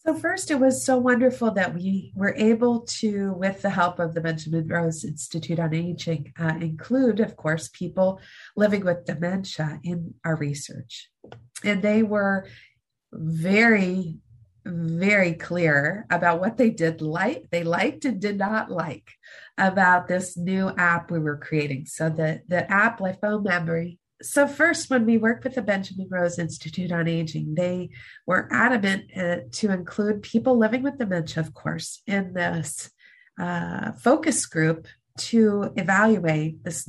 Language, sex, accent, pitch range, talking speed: English, female, American, 165-215 Hz, 150 wpm